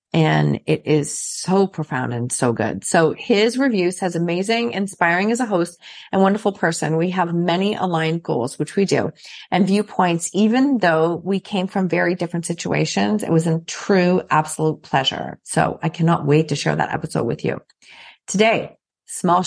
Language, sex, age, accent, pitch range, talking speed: English, female, 40-59, American, 165-195 Hz, 175 wpm